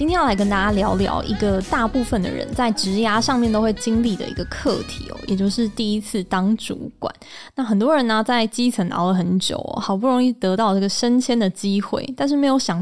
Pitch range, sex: 195-245 Hz, female